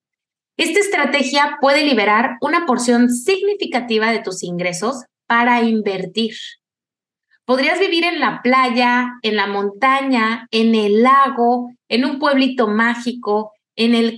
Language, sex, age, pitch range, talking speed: Spanish, female, 30-49, 225-285 Hz, 125 wpm